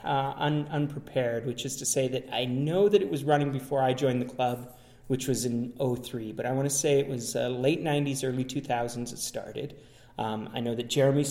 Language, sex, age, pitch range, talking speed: English, male, 30-49, 120-135 Hz, 225 wpm